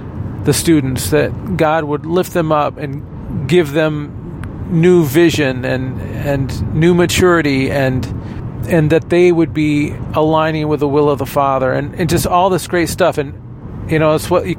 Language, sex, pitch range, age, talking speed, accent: English, male, 130-165 Hz, 40-59, 175 wpm, American